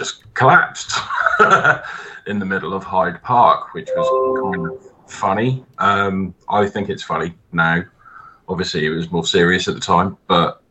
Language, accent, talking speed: English, British, 155 wpm